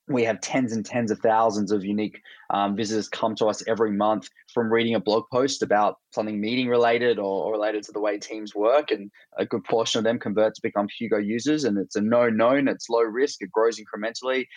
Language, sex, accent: English, male, Australian